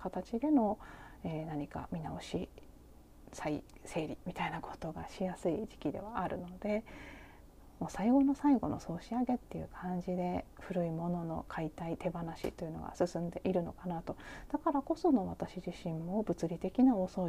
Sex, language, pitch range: female, Japanese, 165-210 Hz